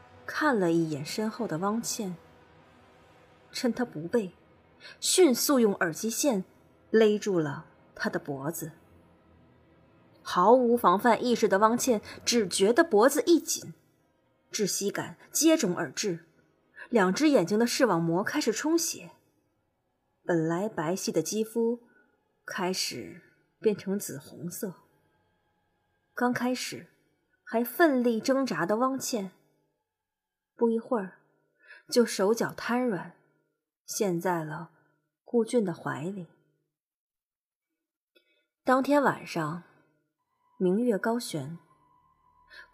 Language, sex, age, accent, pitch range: Chinese, female, 20-39, native, 170-255 Hz